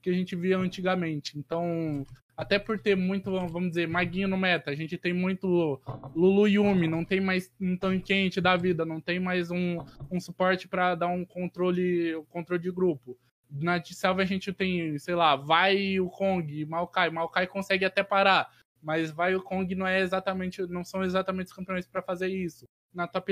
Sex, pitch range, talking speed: male, 165-195 Hz, 195 wpm